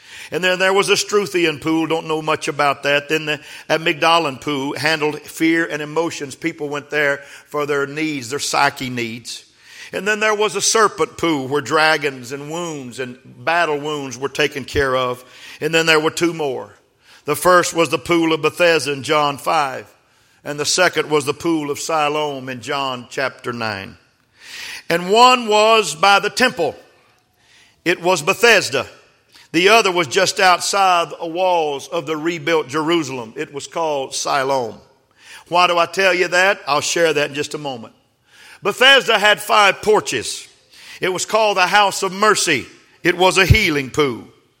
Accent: American